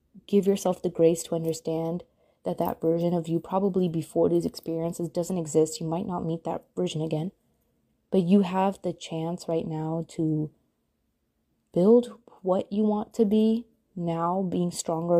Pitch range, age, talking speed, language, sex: 165-205 Hz, 20-39, 160 wpm, English, female